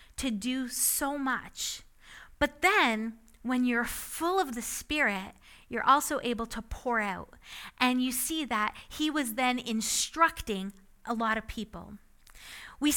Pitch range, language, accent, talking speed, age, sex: 220-295 Hz, English, American, 145 wpm, 30-49, female